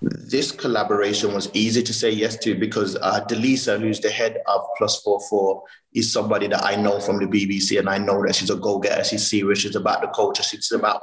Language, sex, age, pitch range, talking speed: English, male, 30-49, 110-135 Hz, 230 wpm